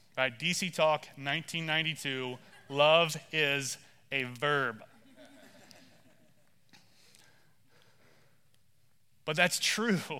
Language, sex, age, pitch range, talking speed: English, male, 30-49, 160-205 Hz, 60 wpm